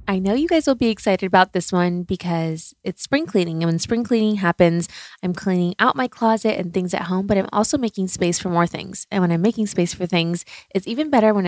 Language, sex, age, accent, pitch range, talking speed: English, female, 20-39, American, 175-215 Hz, 245 wpm